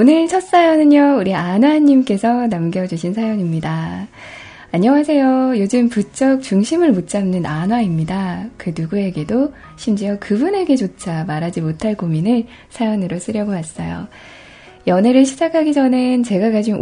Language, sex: Korean, female